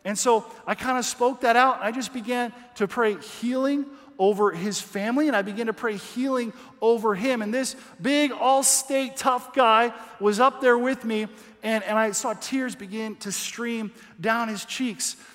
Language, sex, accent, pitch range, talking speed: English, male, American, 210-265 Hz, 185 wpm